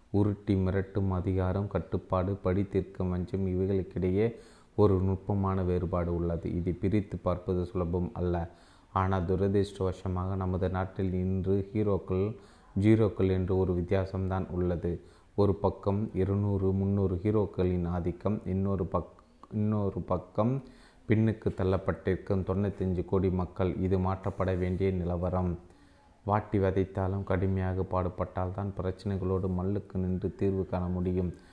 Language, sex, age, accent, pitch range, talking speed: Tamil, male, 30-49, native, 90-100 Hz, 110 wpm